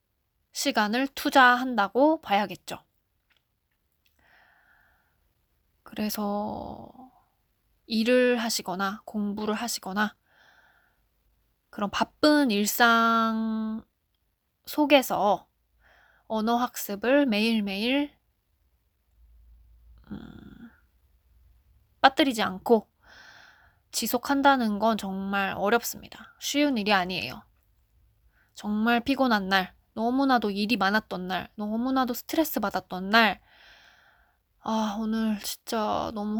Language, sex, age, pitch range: Korean, female, 20-39, 185-250 Hz